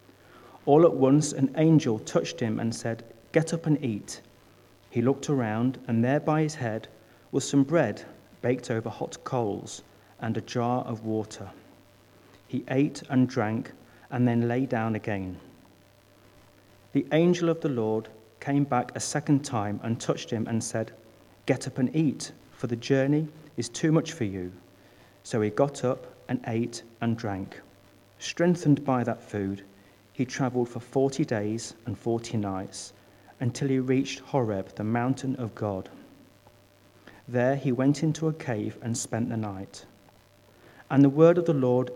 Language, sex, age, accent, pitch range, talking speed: English, male, 40-59, British, 100-135 Hz, 160 wpm